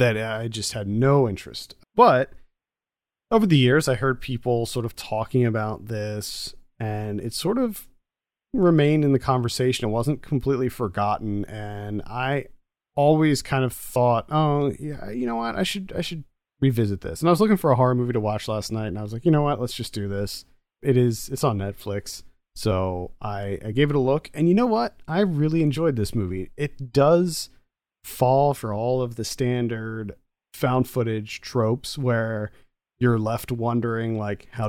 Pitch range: 110-135 Hz